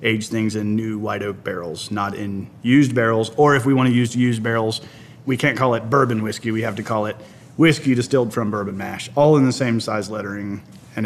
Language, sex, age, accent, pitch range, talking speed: English, male, 30-49, American, 110-130 Hz, 230 wpm